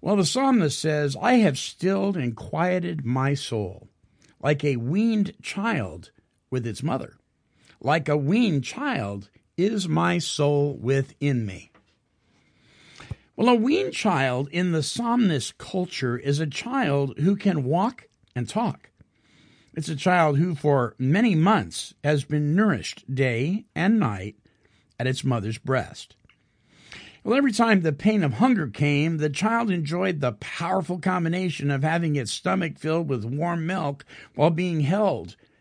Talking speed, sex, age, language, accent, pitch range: 145 wpm, male, 50-69, English, American, 130-185 Hz